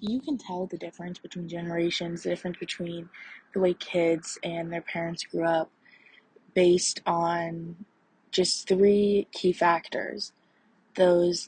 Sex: female